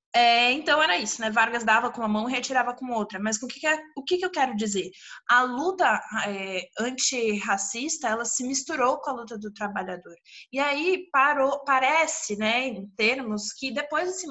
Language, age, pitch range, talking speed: Portuguese, 20-39, 220-270 Hz, 195 wpm